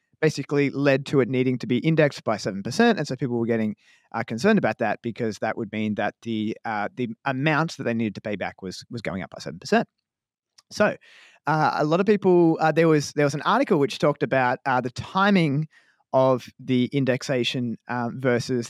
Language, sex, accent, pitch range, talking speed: English, male, Australian, 120-155 Hz, 210 wpm